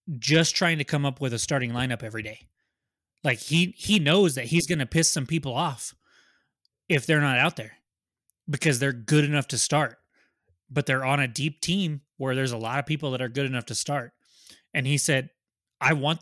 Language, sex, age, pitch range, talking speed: English, male, 20-39, 120-150 Hz, 205 wpm